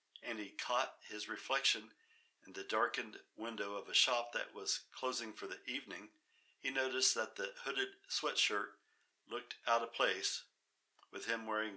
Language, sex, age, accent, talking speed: English, male, 60-79, American, 160 wpm